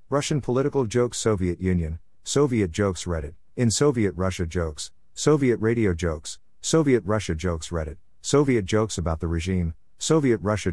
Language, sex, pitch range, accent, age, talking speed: English, male, 85-110 Hz, American, 50-69, 145 wpm